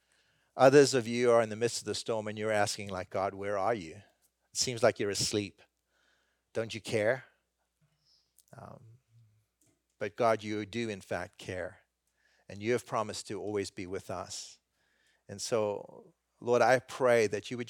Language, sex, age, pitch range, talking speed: English, male, 40-59, 100-120 Hz, 175 wpm